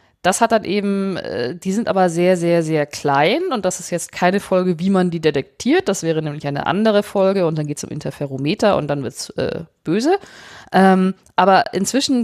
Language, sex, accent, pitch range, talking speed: German, female, German, 155-200 Hz, 200 wpm